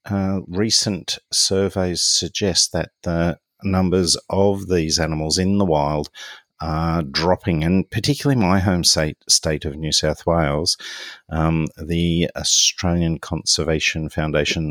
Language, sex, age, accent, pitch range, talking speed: English, male, 50-69, Australian, 75-90 Hz, 120 wpm